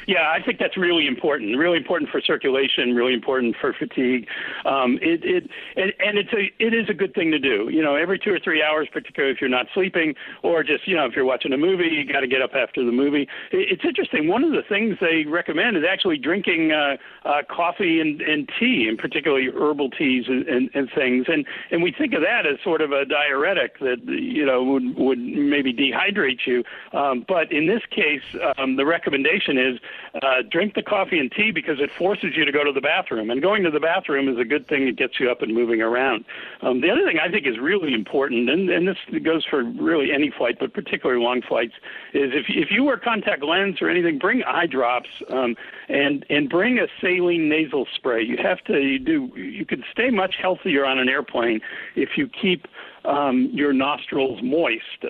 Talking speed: 220 wpm